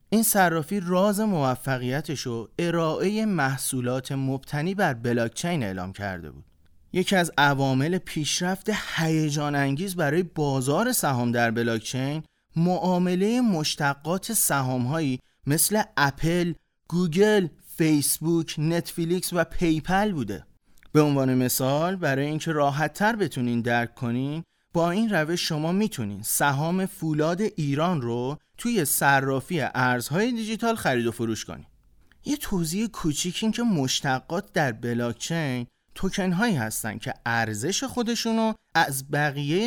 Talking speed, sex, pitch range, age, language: 120 wpm, male, 130-185 Hz, 30-49, Persian